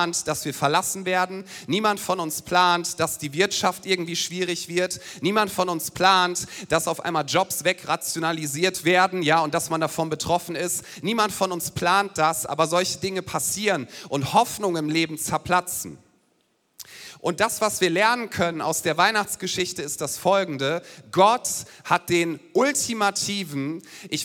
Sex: male